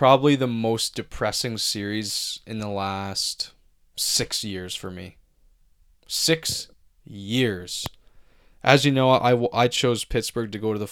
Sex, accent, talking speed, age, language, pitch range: male, American, 145 wpm, 20-39, English, 100-130 Hz